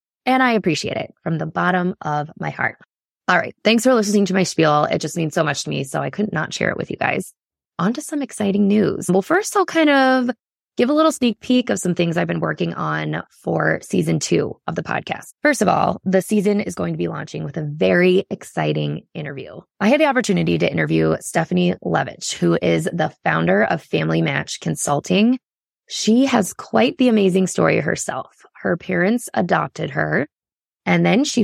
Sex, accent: female, American